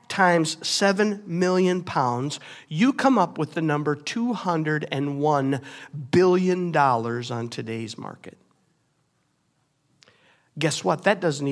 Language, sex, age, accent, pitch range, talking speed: English, male, 50-69, American, 155-200 Hz, 100 wpm